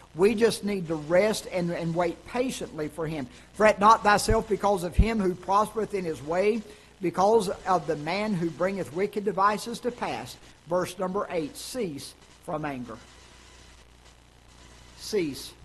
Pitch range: 150-195 Hz